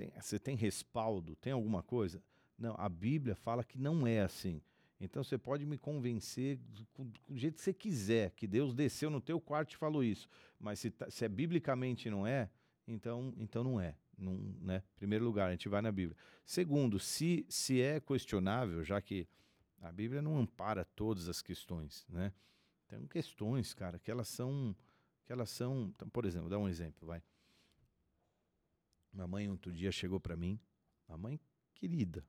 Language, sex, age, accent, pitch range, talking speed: Portuguese, male, 40-59, Brazilian, 90-125 Hz, 175 wpm